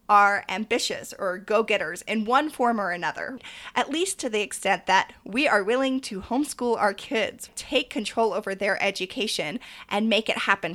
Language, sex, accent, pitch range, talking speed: English, female, American, 205-250 Hz, 175 wpm